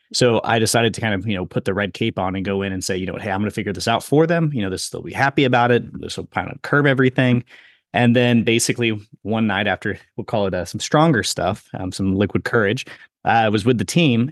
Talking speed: 275 wpm